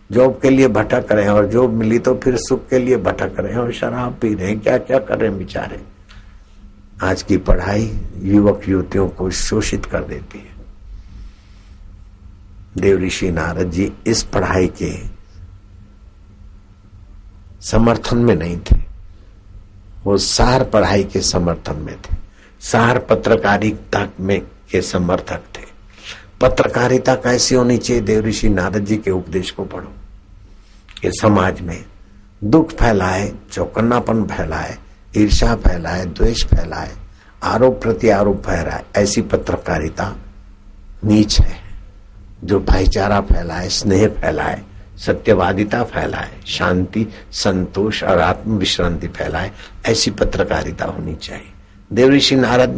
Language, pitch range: Hindi, 95-110 Hz